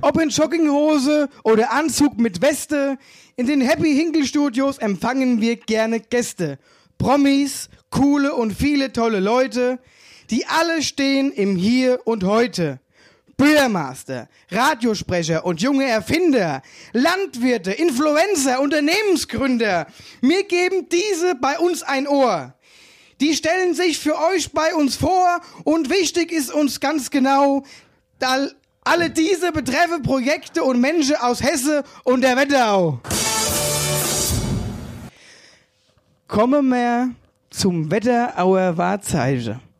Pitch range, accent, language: 235-340 Hz, German, German